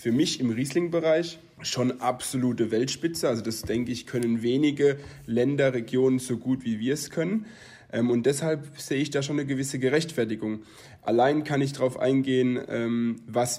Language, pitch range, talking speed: German, 110-135 Hz, 160 wpm